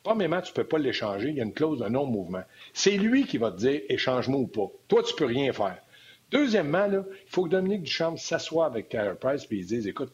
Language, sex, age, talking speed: French, male, 60-79, 250 wpm